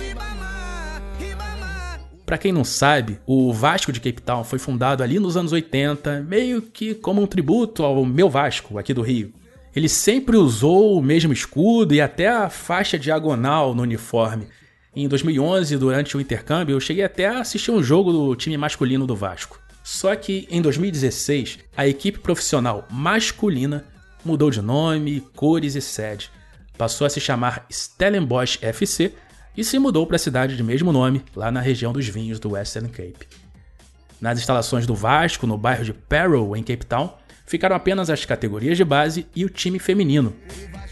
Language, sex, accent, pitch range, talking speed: Portuguese, male, Brazilian, 120-170 Hz, 165 wpm